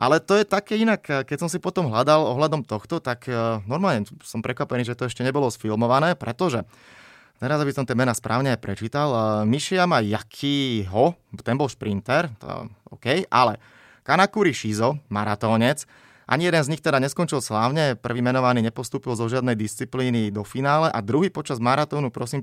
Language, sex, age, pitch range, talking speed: Slovak, male, 30-49, 115-145 Hz, 170 wpm